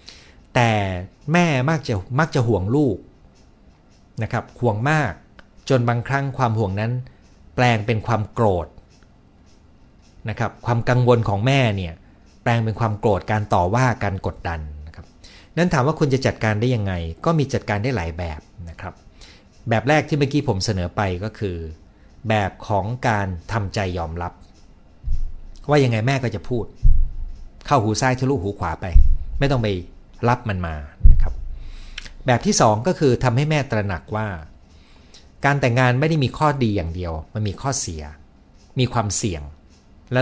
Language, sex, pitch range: Thai, male, 85-130 Hz